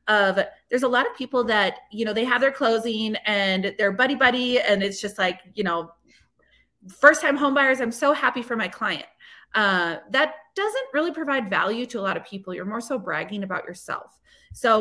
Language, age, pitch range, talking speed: English, 30-49, 195-255 Hz, 205 wpm